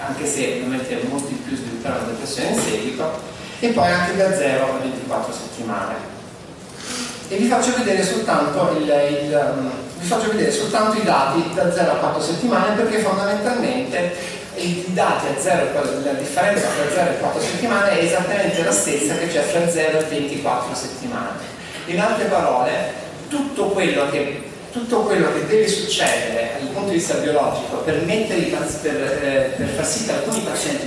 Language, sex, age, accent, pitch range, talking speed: Italian, male, 30-49, native, 150-205 Hz, 170 wpm